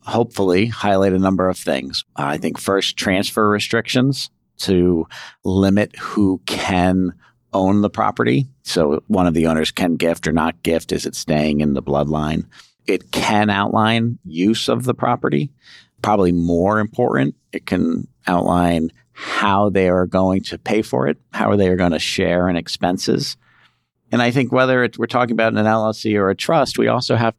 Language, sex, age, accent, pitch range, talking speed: English, male, 50-69, American, 80-105 Hz, 175 wpm